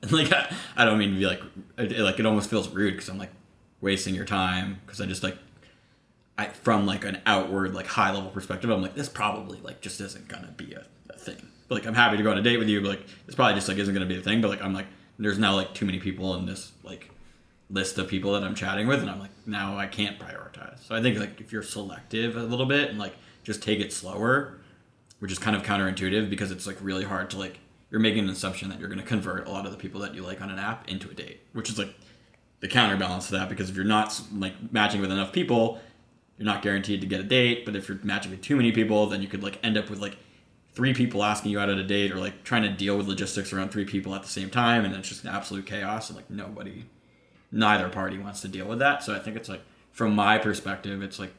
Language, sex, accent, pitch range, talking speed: English, male, American, 95-110 Hz, 265 wpm